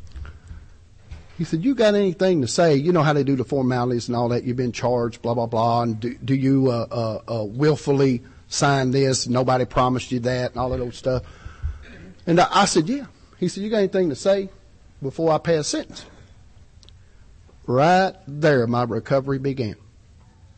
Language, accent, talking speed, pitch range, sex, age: English, American, 180 wpm, 95-150 Hz, male, 50-69